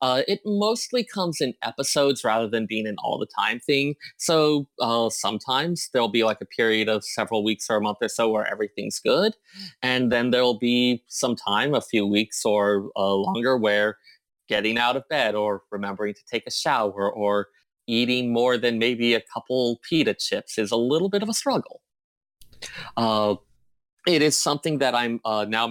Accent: American